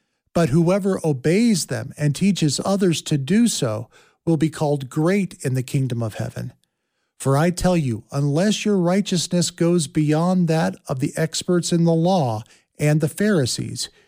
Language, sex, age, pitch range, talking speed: English, male, 40-59, 140-180 Hz, 160 wpm